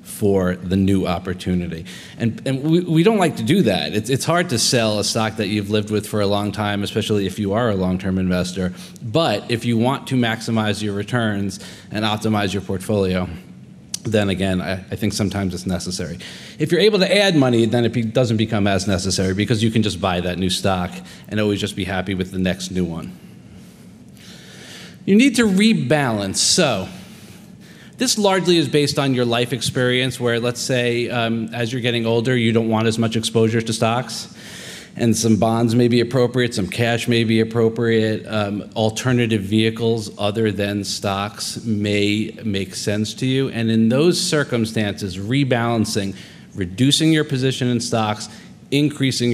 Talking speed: 180 wpm